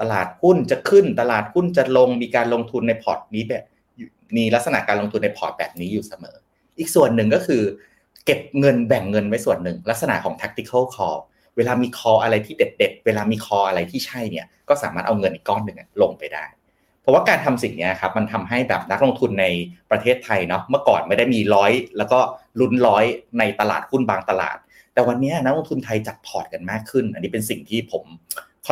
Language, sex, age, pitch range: Thai, male, 30-49, 105-135 Hz